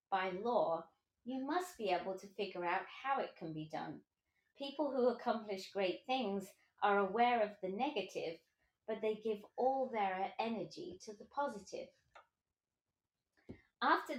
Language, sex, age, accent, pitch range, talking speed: English, female, 30-49, British, 190-250 Hz, 145 wpm